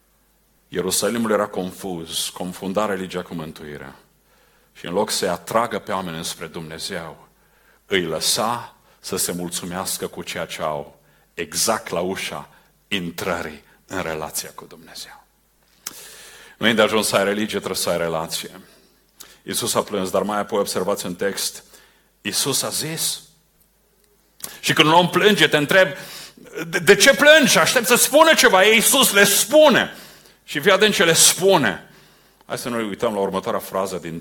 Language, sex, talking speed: Romanian, male, 155 wpm